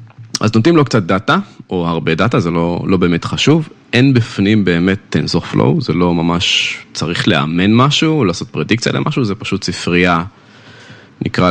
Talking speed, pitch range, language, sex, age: 165 wpm, 90-125 Hz, Hebrew, male, 20-39